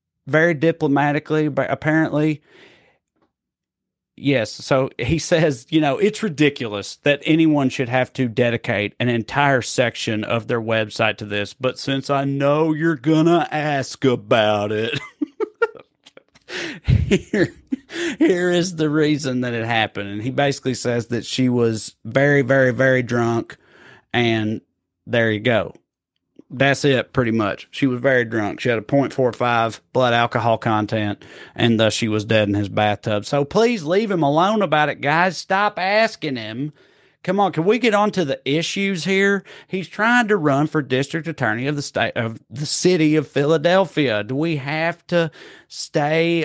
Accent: American